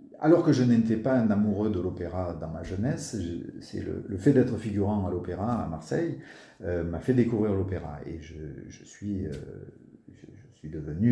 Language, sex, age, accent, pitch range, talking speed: French, male, 50-69, French, 95-125 Hz, 200 wpm